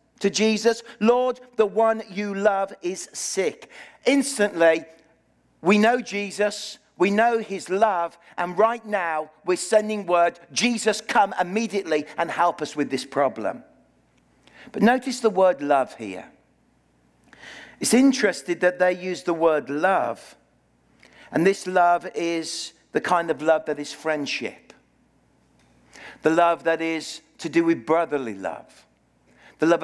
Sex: male